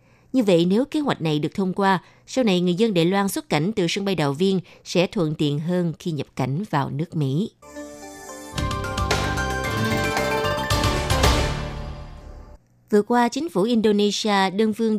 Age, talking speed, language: 20-39, 155 wpm, Vietnamese